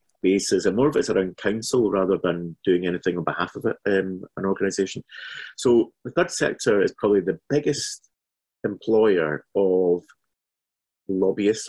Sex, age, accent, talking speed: male, 30-49, British, 150 wpm